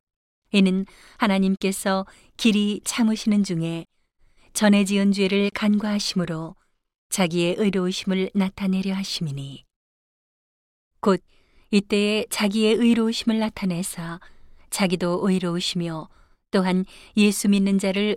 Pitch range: 175-205 Hz